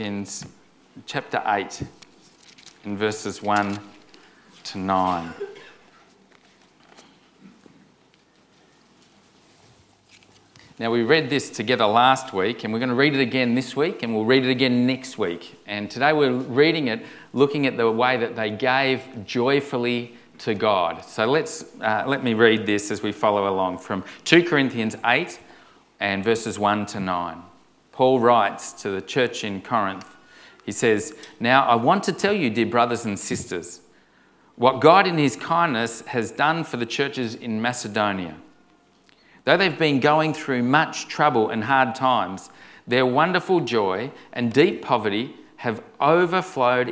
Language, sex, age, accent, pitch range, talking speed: English, male, 40-59, Australian, 105-140 Hz, 145 wpm